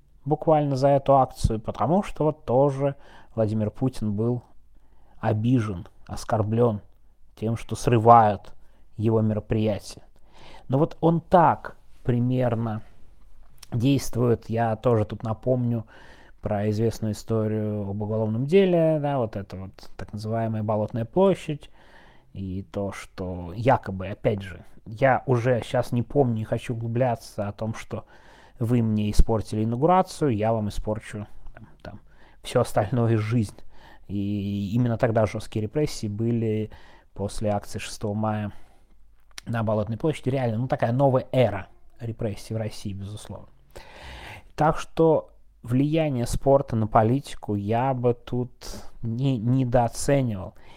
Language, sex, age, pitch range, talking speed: Russian, male, 30-49, 105-125 Hz, 125 wpm